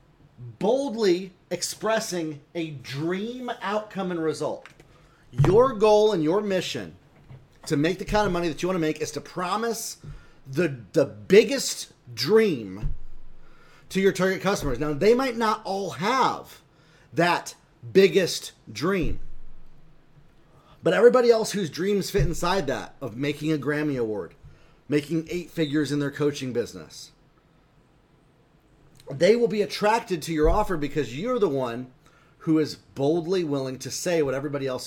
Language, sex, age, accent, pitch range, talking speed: English, male, 30-49, American, 145-205 Hz, 145 wpm